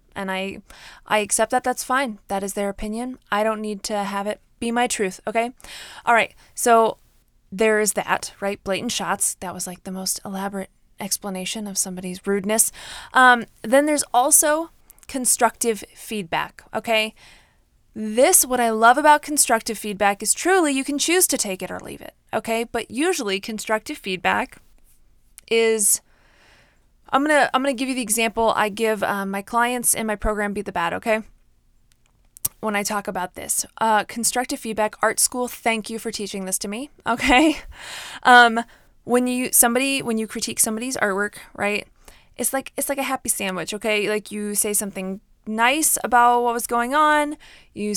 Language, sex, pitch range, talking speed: English, female, 200-250 Hz, 175 wpm